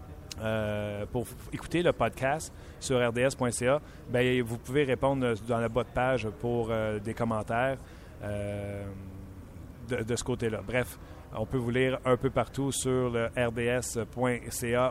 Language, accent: French, Canadian